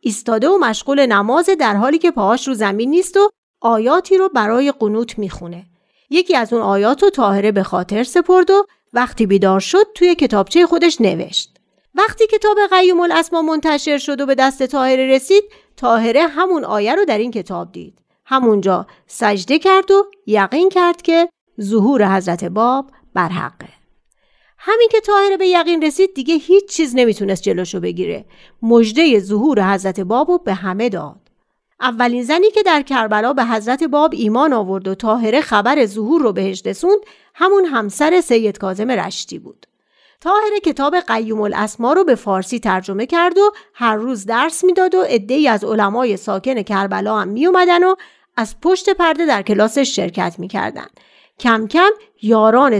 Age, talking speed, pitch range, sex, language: 40-59, 155 wpm, 215-350 Hz, female, Persian